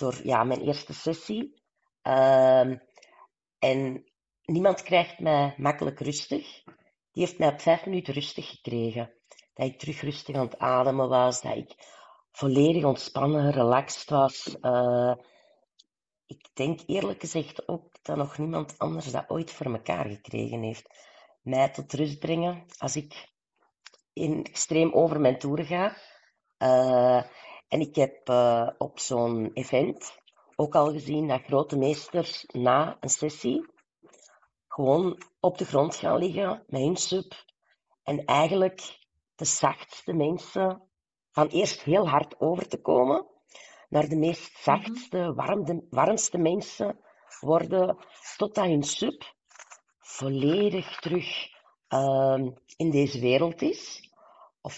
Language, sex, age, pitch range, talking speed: Dutch, female, 40-59, 130-170 Hz, 125 wpm